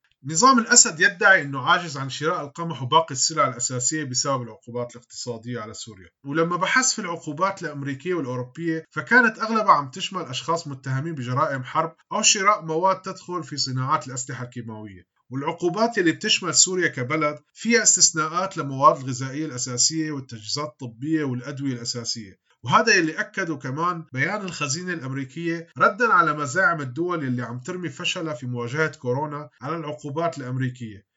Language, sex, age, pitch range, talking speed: Arabic, male, 30-49, 130-180 Hz, 140 wpm